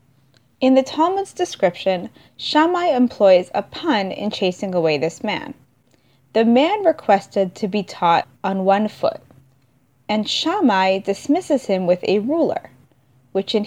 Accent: American